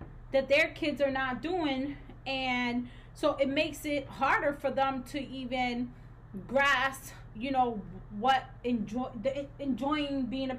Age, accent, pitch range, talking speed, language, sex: 20-39, American, 230-275 Hz, 130 wpm, English, female